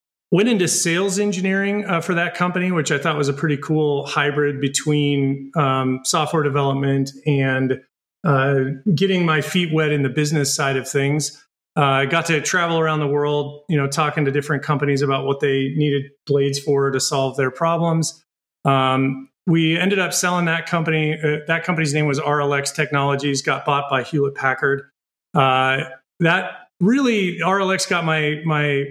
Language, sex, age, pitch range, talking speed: English, male, 30-49, 140-165 Hz, 170 wpm